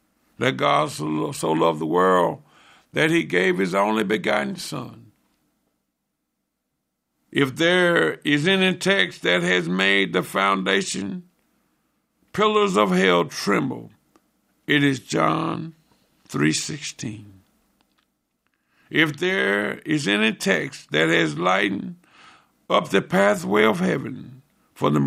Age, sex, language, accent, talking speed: 60-79, male, English, American, 110 wpm